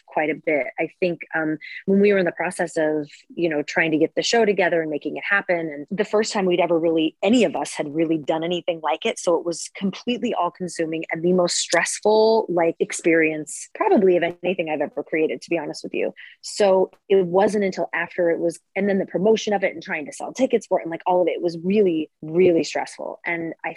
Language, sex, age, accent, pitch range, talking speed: English, female, 30-49, American, 155-185 Hz, 240 wpm